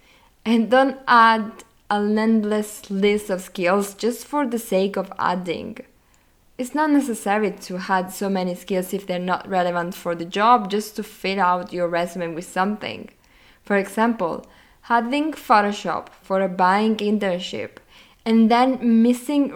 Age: 20-39